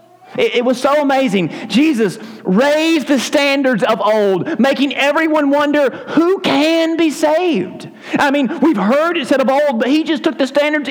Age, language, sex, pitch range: 40-59, English, male, 210-280 Hz